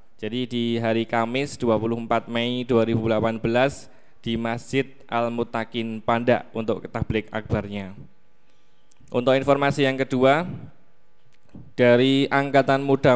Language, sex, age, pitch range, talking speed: Indonesian, male, 10-29, 120-135 Hz, 100 wpm